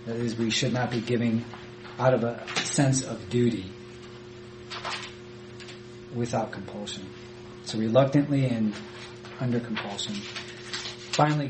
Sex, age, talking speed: male, 40-59, 105 wpm